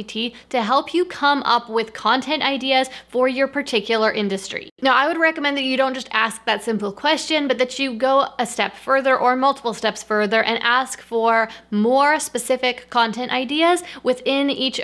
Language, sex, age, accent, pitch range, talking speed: English, female, 20-39, American, 215-270 Hz, 180 wpm